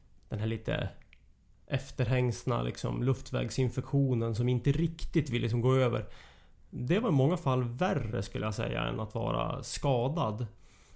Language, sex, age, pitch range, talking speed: English, male, 30-49, 115-155 Hz, 140 wpm